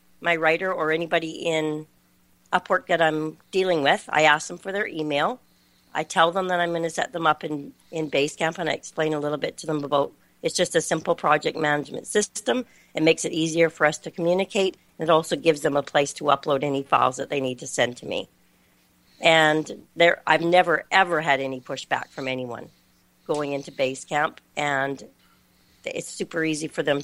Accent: American